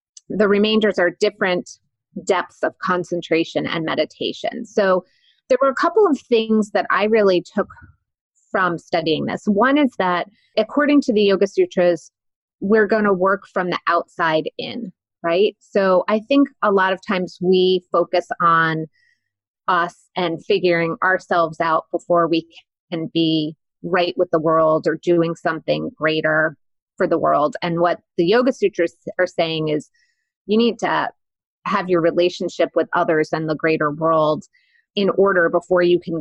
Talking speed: 155 wpm